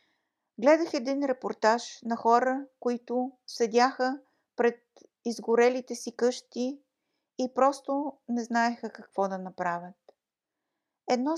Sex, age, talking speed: female, 50-69, 100 wpm